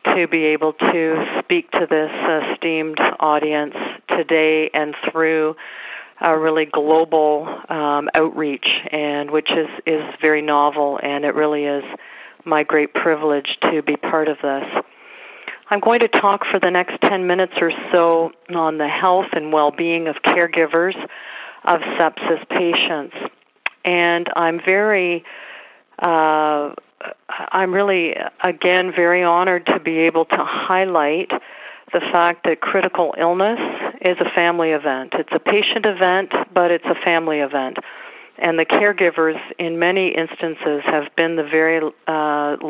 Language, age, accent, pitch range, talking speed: English, 50-69, American, 155-180 Hz, 140 wpm